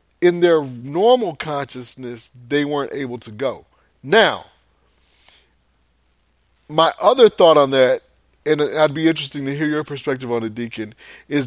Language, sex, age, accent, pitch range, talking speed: English, male, 30-49, American, 120-170 Hz, 140 wpm